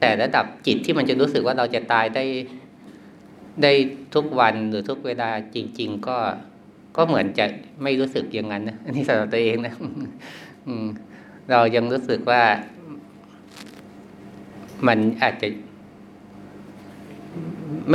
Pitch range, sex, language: 100-125 Hz, male, Thai